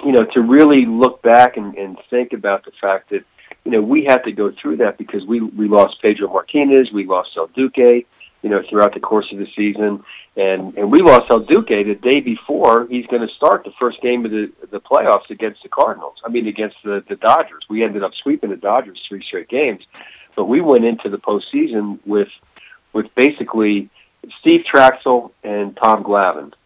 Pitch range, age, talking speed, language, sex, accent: 105-130 Hz, 50-69, 205 wpm, English, male, American